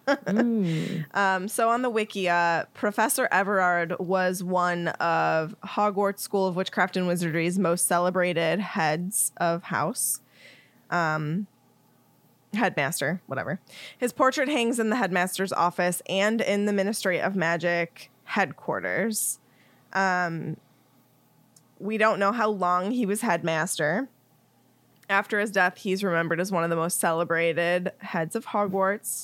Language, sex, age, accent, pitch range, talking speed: English, female, 20-39, American, 170-200 Hz, 125 wpm